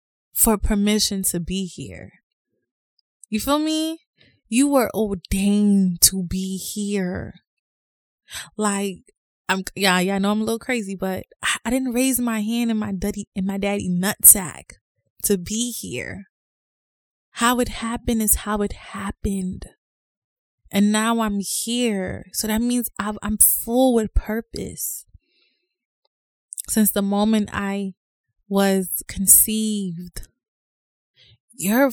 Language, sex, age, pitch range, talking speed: English, female, 20-39, 195-235 Hz, 120 wpm